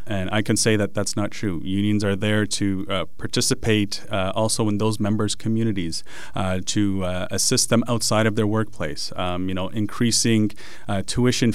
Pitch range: 95-110 Hz